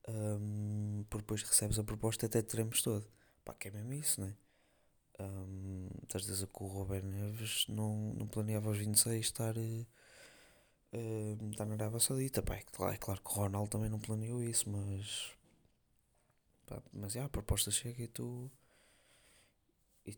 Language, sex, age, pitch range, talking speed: Portuguese, male, 20-39, 100-115 Hz, 175 wpm